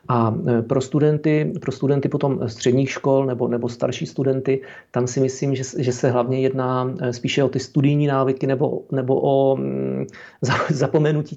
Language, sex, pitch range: Czech, male, 130-145 Hz